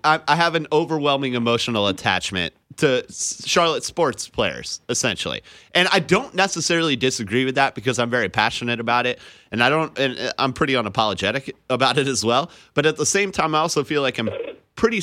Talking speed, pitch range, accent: 175 wpm, 130-185 Hz, American